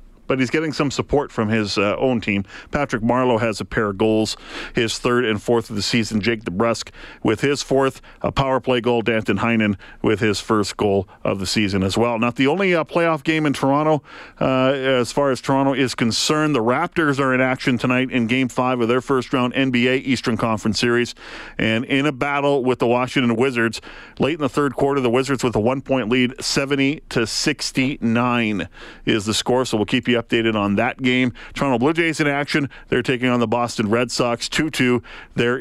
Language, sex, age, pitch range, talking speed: English, male, 40-59, 110-135 Hz, 205 wpm